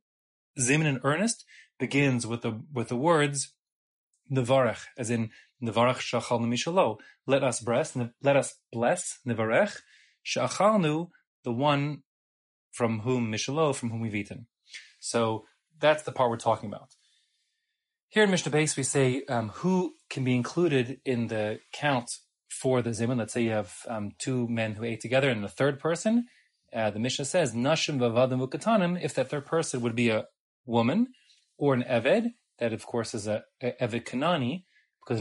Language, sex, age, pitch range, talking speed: English, male, 30-49, 115-155 Hz, 160 wpm